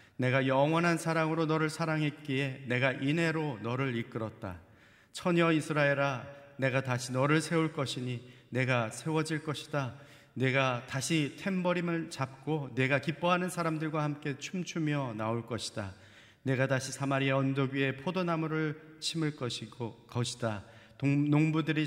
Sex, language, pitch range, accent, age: male, Korean, 115-155 Hz, native, 40-59